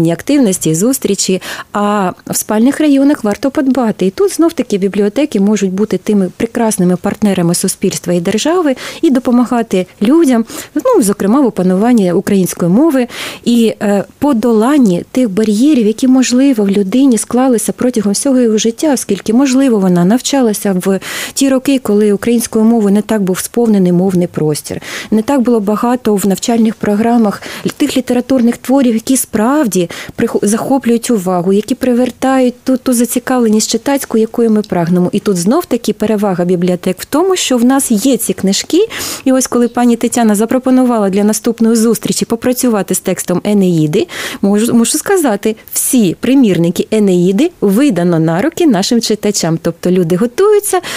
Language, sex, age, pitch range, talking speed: Ukrainian, female, 30-49, 200-260 Hz, 145 wpm